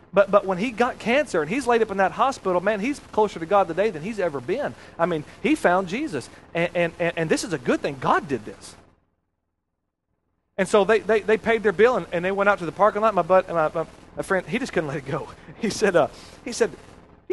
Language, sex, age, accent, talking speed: English, male, 40-59, American, 260 wpm